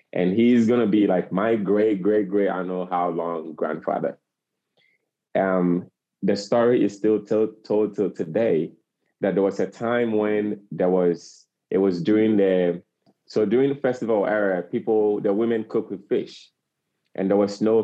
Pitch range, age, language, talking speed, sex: 90-110 Hz, 30-49, English, 170 wpm, male